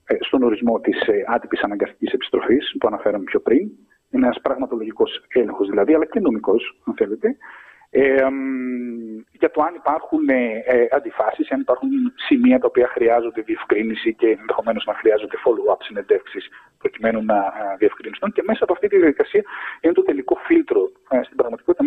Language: Greek